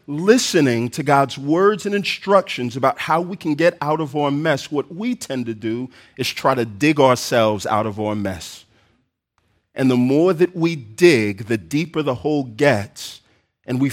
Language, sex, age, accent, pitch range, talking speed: English, male, 40-59, American, 100-130 Hz, 180 wpm